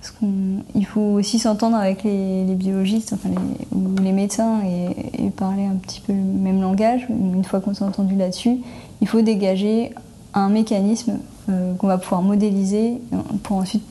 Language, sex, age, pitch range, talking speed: French, female, 20-39, 190-220 Hz, 175 wpm